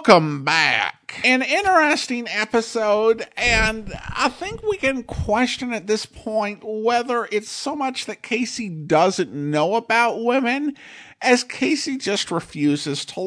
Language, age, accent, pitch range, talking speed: English, 50-69, American, 165-250 Hz, 130 wpm